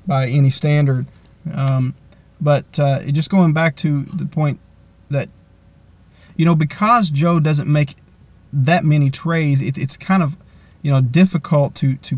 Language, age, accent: English, 30-49, American